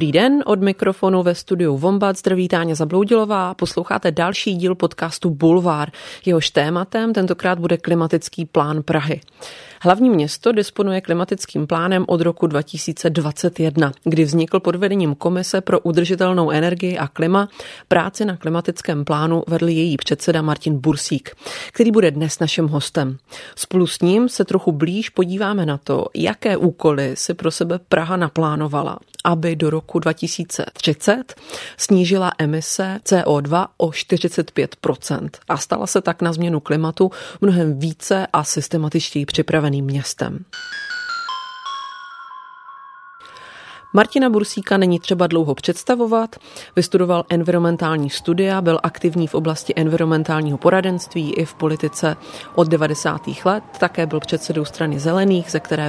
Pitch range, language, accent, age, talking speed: 160-190 Hz, Czech, native, 30-49, 130 wpm